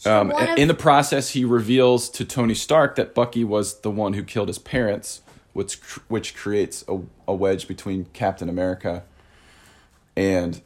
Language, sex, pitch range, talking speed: English, male, 90-110 Hz, 160 wpm